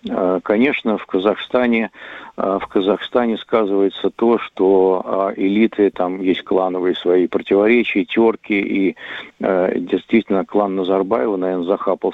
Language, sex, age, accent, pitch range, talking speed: Russian, male, 50-69, native, 95-115 Hz, 105 wpm